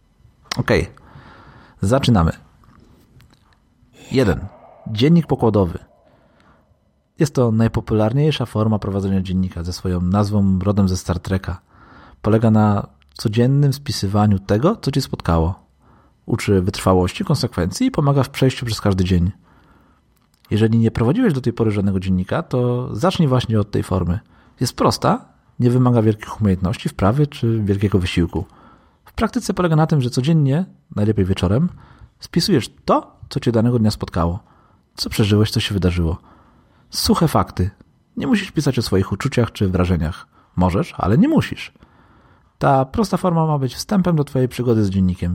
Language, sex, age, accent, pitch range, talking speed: Polish, male, 40-59, native, 95-125 Hz, 140 wpm